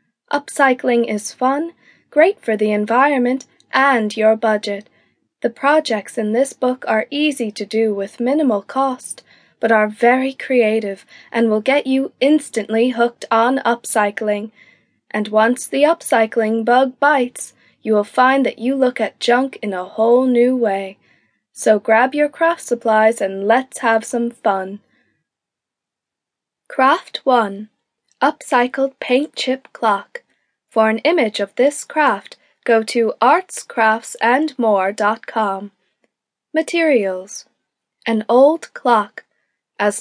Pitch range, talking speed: 215-270 Hz, 125 wpm